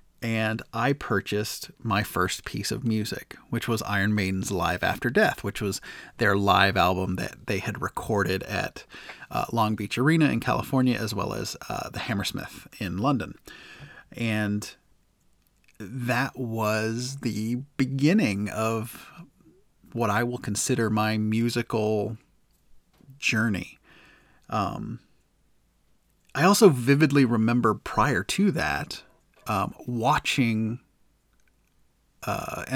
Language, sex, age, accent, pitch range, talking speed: English, male, 30-49, American, 105-130 Hz, 115 wpm